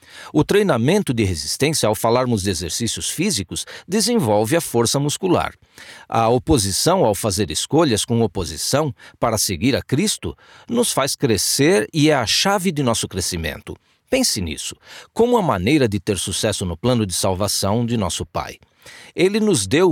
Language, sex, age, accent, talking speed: English, male, 50-69, Brazilian, 155 wpm